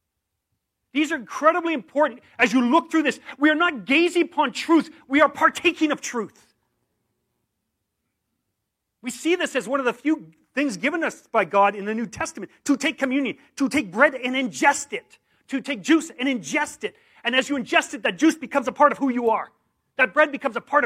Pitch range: 210-295 Hz